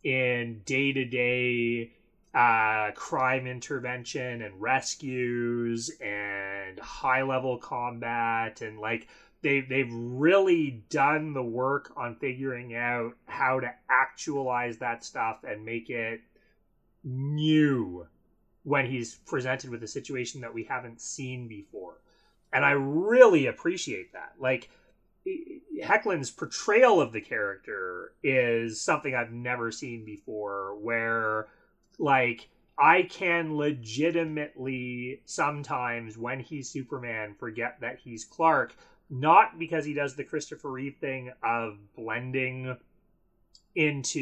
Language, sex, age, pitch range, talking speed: English, male, 30-49, 115-140 Hz, 110 wpm